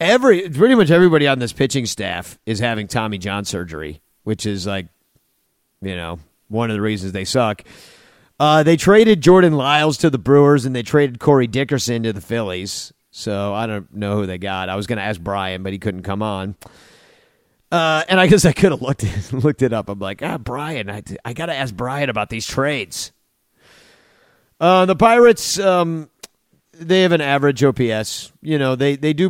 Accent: American